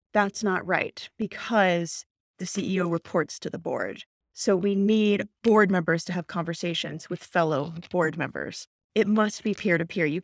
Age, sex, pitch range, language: 30-49, female, 185-235 Hz, English